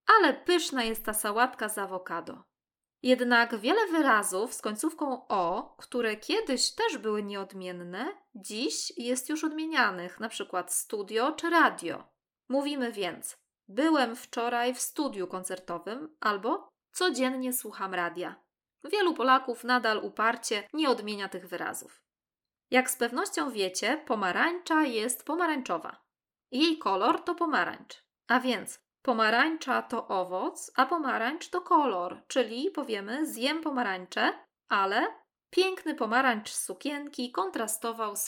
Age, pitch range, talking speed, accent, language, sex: 20-39, 215-310 Hz, 120 wpm, native, Polish, female